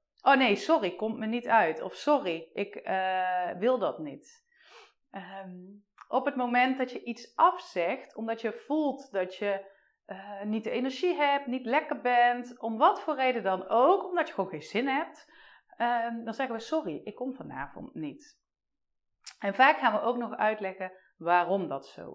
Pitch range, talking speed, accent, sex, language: 200-280 Hz, 175 wpm, Dutch, female, Dutch